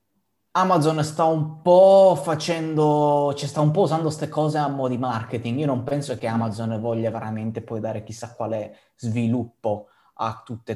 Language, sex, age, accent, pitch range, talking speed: Italian, male, 20-39, native, 110-130 Hz, 175 wpm